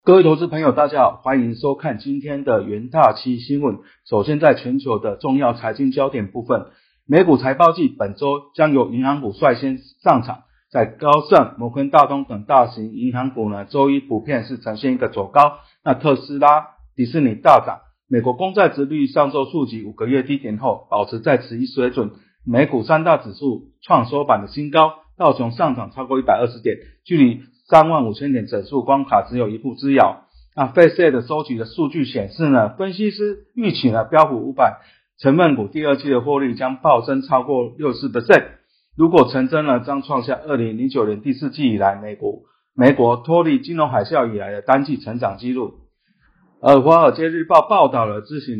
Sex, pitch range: male, 120-150 Hz